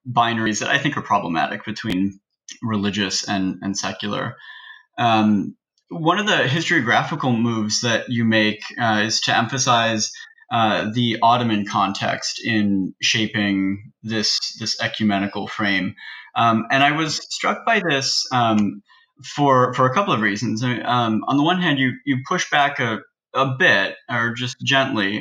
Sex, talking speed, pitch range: male, 155 wpm, 105-125 Hz